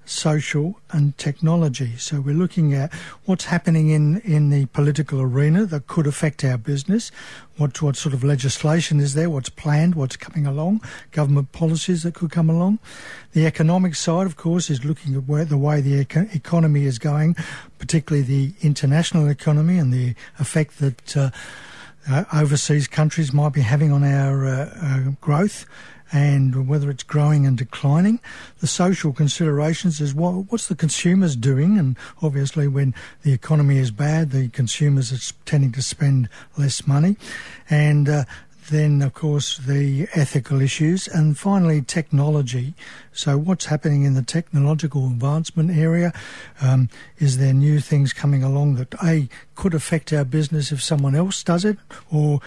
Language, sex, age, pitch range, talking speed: English, male, 60-79, 140-165 Hz, 160 wpm